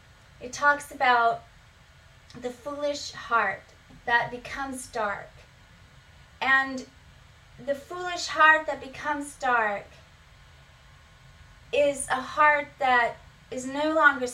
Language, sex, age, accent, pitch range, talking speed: English, female, 30-49, American, 235-285 Hz, 95 wpm